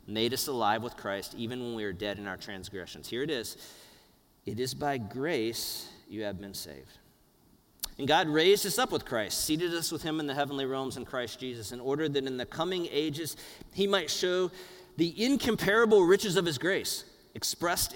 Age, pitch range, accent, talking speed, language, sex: 40-59, 105-145 Hz, American, 195 wpm, English, male